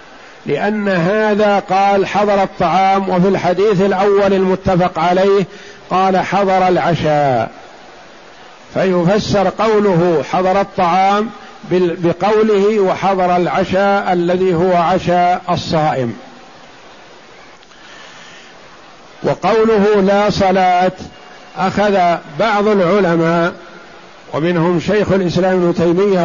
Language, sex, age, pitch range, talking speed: Arabic, male, 50-69, 175-205 Hz, 80 wpm